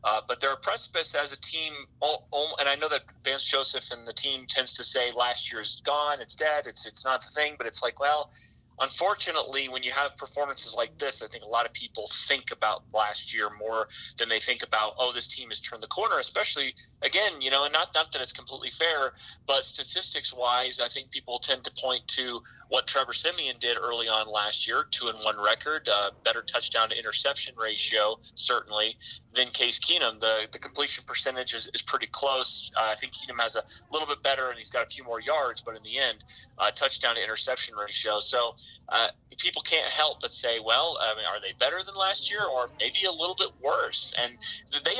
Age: 30-49